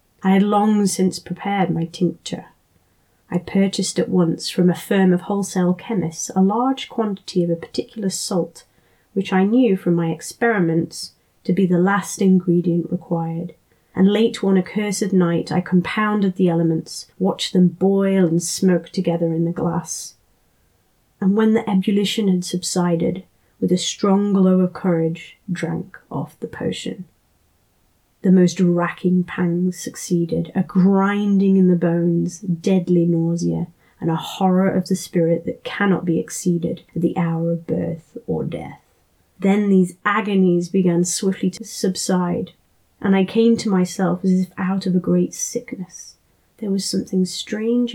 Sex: female